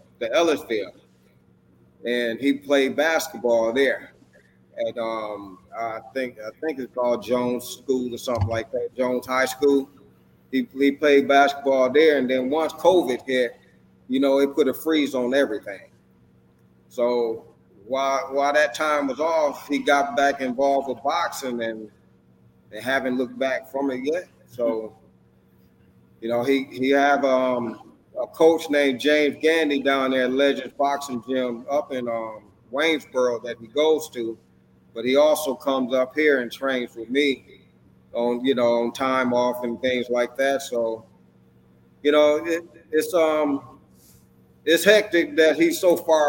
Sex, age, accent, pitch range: male, 30-49, American, 120-140 Hz